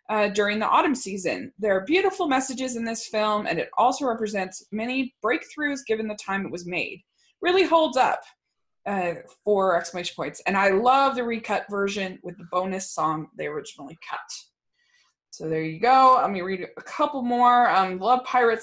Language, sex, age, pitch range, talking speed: English, female, 20-39, 185-260 Hz, 185 wpm